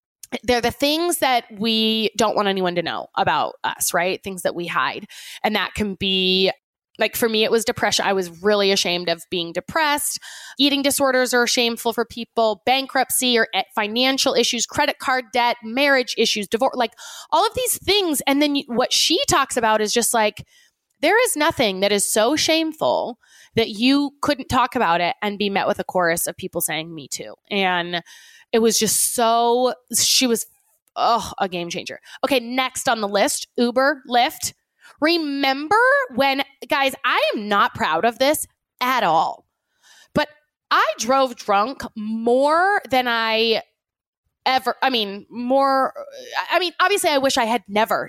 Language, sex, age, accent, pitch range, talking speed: English, female, 20-39, American, 205-275 Hz, 170 wpm